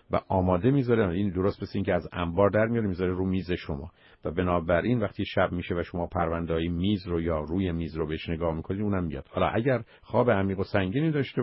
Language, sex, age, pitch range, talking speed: Persian, male, 50-69, 80-100 Hz, 220 wpm